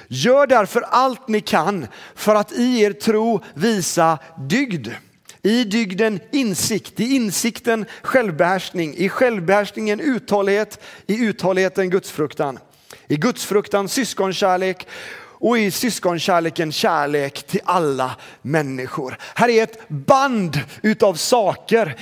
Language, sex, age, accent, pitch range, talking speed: Swedish, male, 40-59, native, 175-235 Hz, 110 wpm